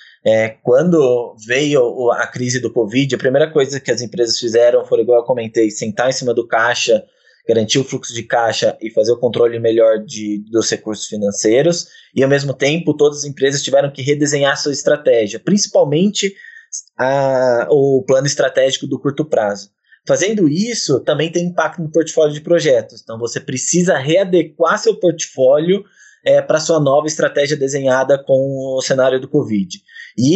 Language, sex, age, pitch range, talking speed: Portuguese, male, 20-39, 125-165 Hz, 160 wpm